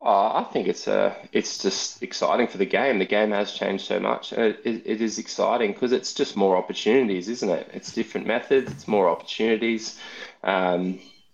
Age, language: 20-39, English